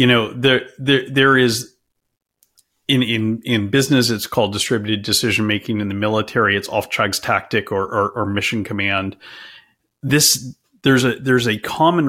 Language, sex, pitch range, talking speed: English, male, 105-130 Hz, 160 wpm